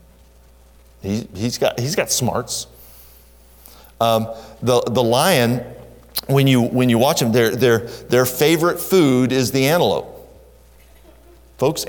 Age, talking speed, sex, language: 40-59, 125 wpm, male, English